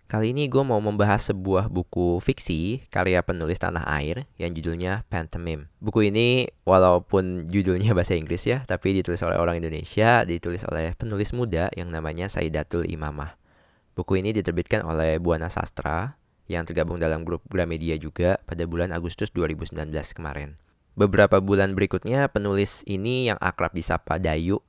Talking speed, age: 150 wpm, 10-29